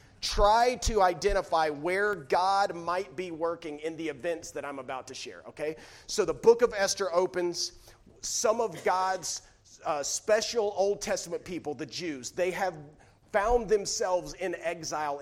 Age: 40-59